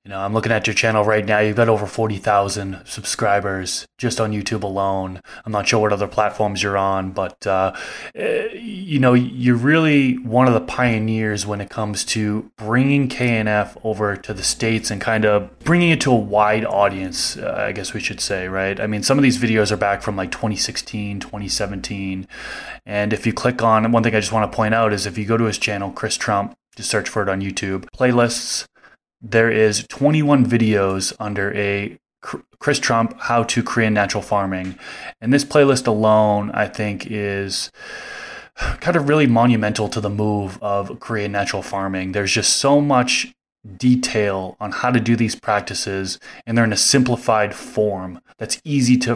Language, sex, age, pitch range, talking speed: English, male, 20-39, 100-115 Hz, 190 wpm